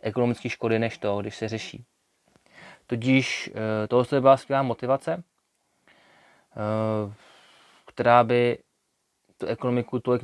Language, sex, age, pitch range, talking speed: Czech, male, 20-39, 105-120 Hz, 100 wpm